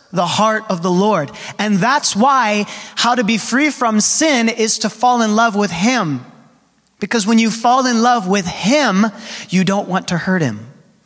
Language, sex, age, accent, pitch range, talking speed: English, male, 30-49, American, 180-235 Hz, 190 wpm